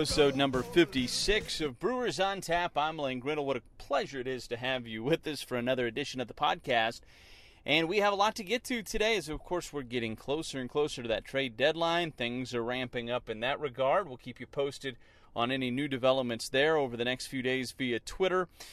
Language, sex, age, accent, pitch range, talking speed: English, male, 30-49, American, 120-155 Hz, 225 wpm